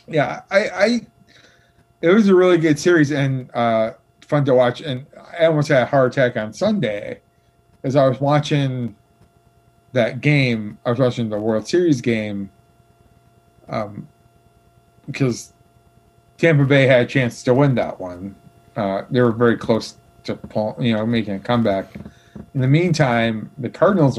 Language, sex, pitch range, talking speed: English, male, 110-130 Hz, 155 wpm